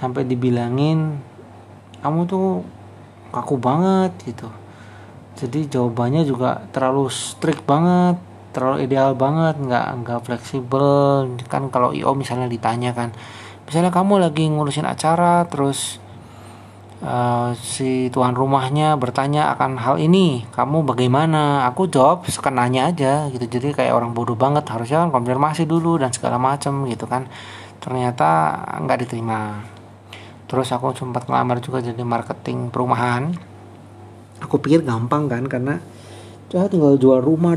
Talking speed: 125 wpm